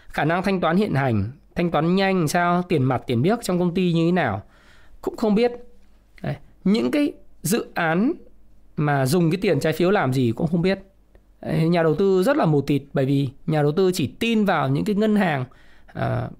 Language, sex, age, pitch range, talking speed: Vietnamese, male, 20-39, 170-210 Hz, 210 wpm